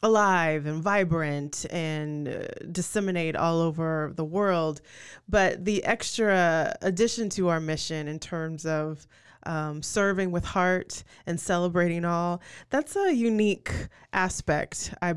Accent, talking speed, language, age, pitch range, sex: American, 125 wpm, English, 20-39, 165-195 Hz, female